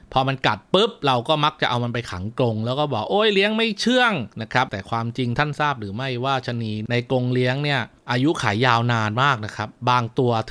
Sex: male